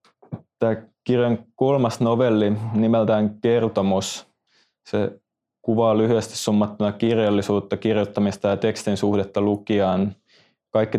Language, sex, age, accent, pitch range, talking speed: Finnish, male, 20-39, native, 100-110 Hz, 95 wpm